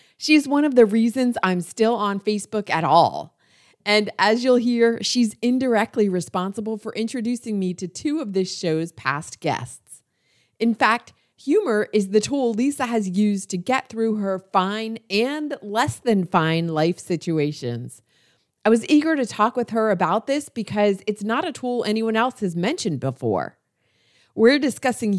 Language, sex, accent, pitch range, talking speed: English, female, American, 180-245 Hz, 165 wpm